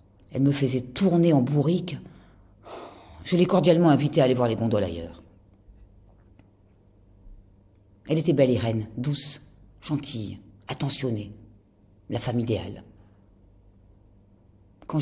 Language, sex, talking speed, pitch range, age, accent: French, female, 110 wpm, 100-140 Hz, 50-69, French